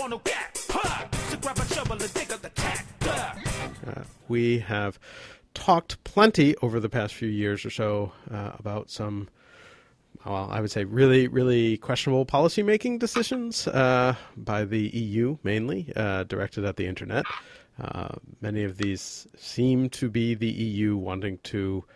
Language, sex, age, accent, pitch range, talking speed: English, male, 40-59, American, 95-120 Hz, 125 wpm